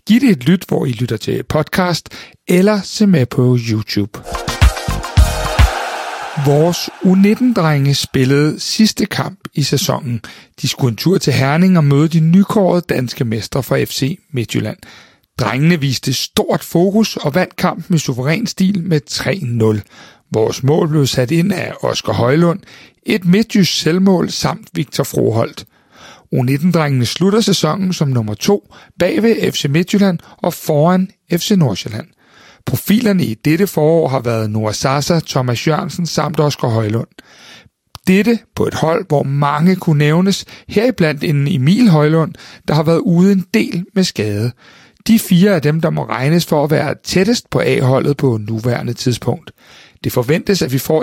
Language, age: Danish, 60-79